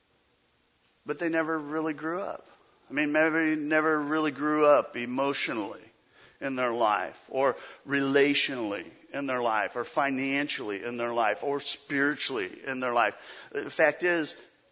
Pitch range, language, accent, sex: 140-205 Hz, English, American, male